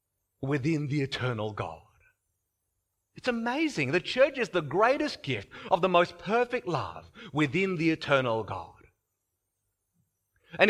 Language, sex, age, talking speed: English, male, 40-59, 125 wpm